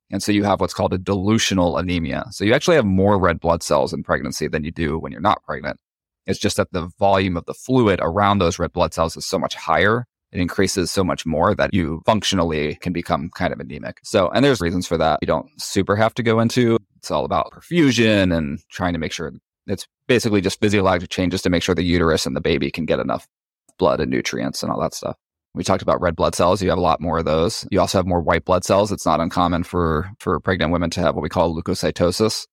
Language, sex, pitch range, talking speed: English, male, 85-100 Hz, 245 wpm